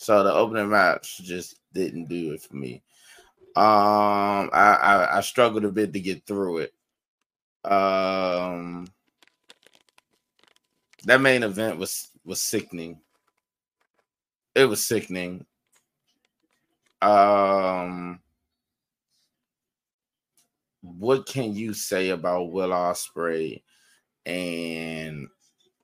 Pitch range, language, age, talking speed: 90-105 Hz, English, 20-39, 95 wpm